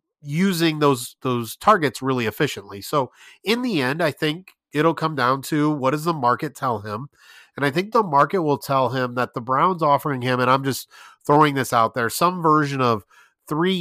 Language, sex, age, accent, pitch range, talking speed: English, male, 30-49, American, 125-160 Hz, 200 wpm